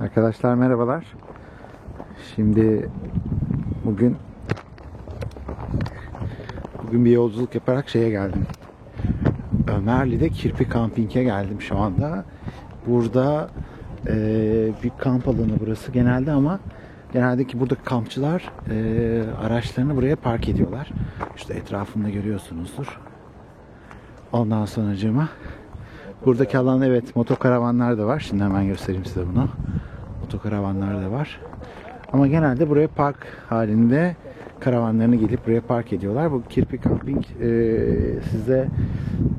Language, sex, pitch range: Turkish, male, 110-130 Hz